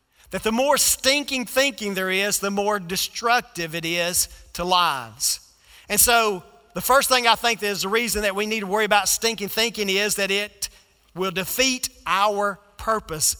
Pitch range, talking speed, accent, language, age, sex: 175-220 Hz, 175 wpm, American, English, 40-59, male